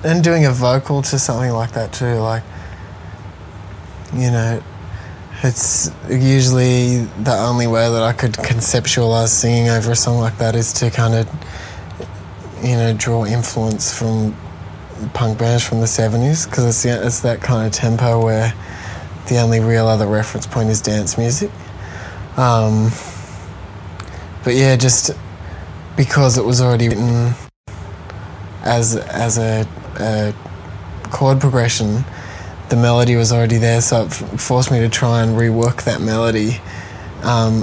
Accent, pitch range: Australian, 100-120 Hz